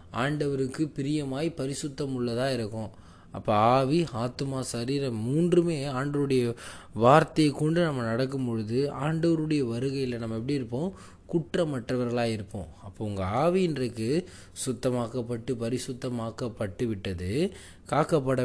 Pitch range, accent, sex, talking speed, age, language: 115-145 Hz, native, male, 100 wpm, 20-39, Tamil